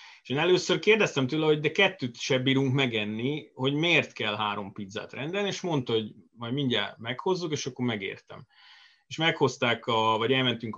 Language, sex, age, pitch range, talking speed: Hungarian, male, 30-49, 115-145 Hz, 175 wpm